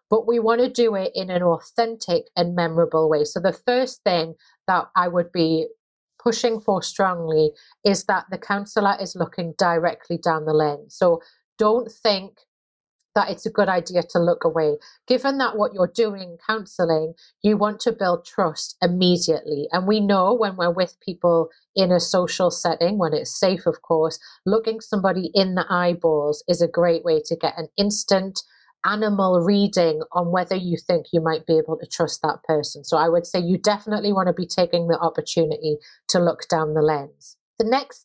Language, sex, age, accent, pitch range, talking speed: English, female, 30-49, British, 165-205 Hz, 185 wpm